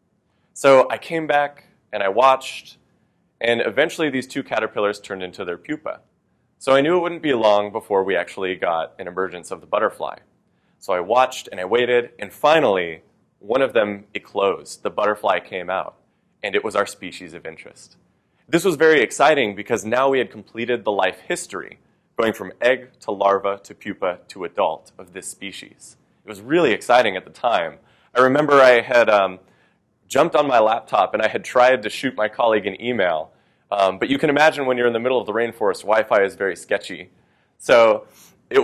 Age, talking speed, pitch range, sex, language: 20-39, 195 wpm, 110-150 Hz, male, English